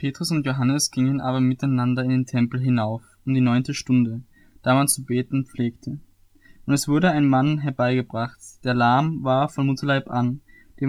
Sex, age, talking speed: male, 10-29, 175 wpm